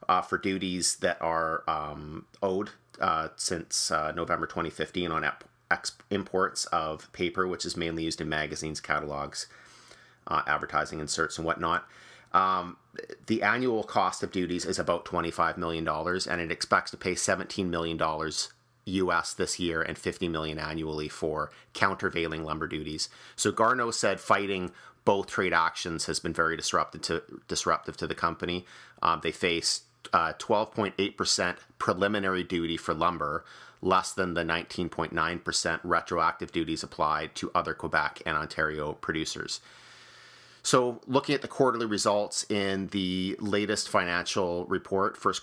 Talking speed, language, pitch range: 140 wpm, English, 80-95 Hz